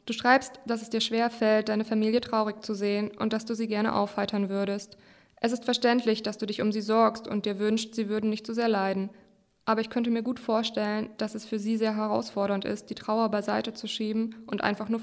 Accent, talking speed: German, 230 wpm